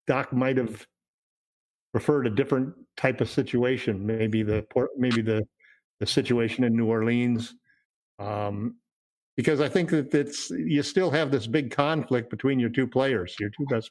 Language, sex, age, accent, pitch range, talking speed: English, male, 50-69, American, 115-140 Hz, 160 wpm